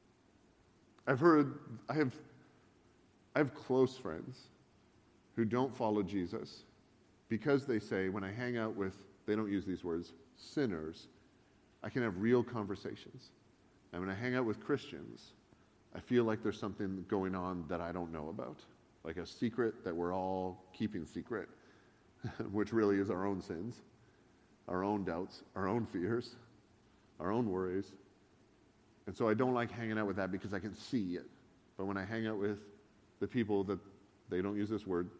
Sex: male